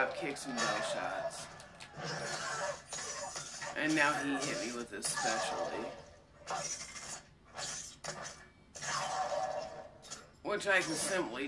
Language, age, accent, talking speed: English, 40-59, American, 85 wpm